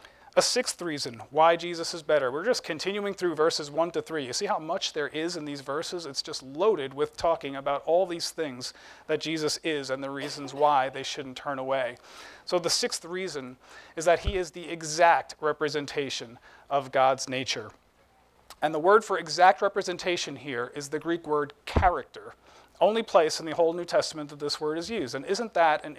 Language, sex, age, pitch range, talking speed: English, male, 40-59, 145-175 Hz, 200 wpm